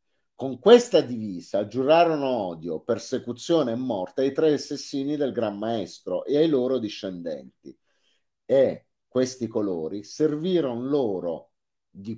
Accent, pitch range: native, 100-150 Hz